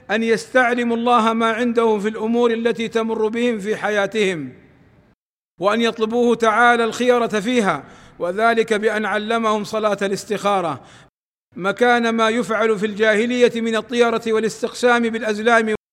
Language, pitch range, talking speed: Arabic, 195-225 Hz, 115 wpm